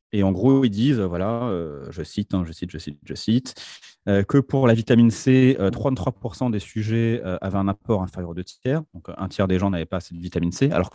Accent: French